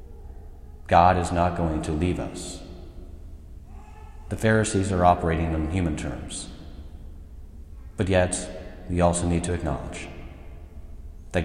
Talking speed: 115 wpm